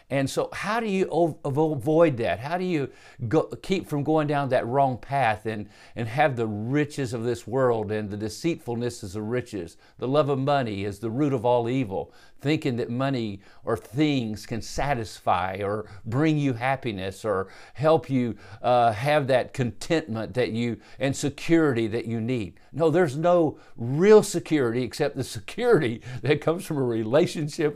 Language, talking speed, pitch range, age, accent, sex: English, 175 wpm, 110-150 Hz, 50-69, American, male